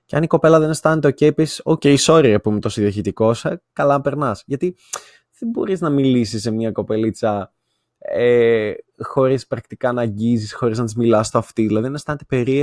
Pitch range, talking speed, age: 110-145 Hz, 185 wpm, 20-39